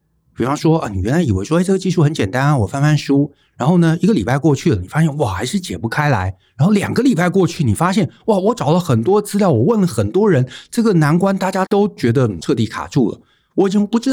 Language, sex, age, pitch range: Chinese, male, 60-79, 110-180 Hz